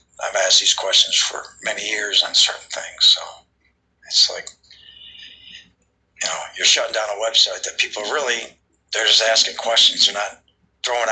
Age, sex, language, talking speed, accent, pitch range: 50-69, male, English, 160 wpm, American, 105-140 Hz